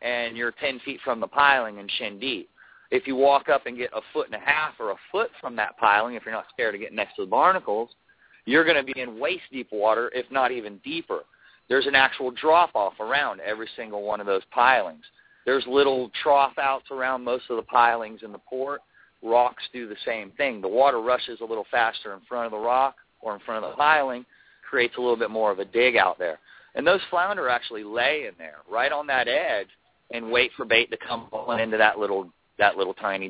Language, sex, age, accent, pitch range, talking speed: English, male, 30-49, American, 110-145 Hz, 225 wpm